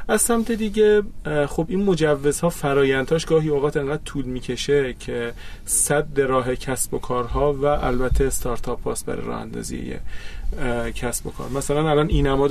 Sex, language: male, Persian